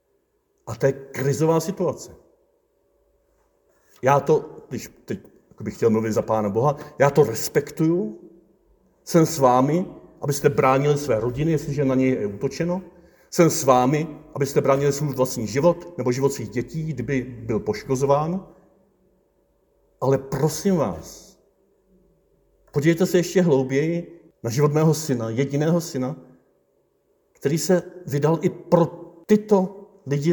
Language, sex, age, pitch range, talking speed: Czech, male, 50-69, 135-190 Hz, 130 wpm